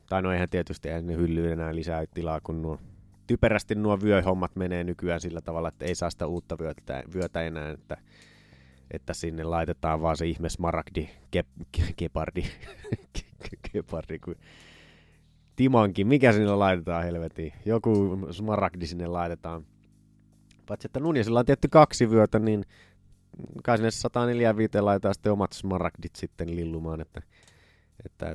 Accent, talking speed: native, 140 wpm